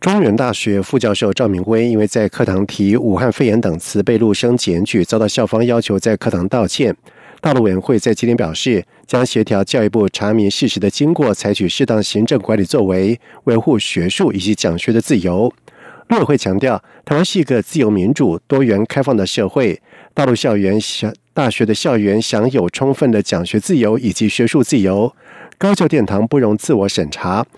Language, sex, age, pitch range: German, male, 50-69, 105-135 Hz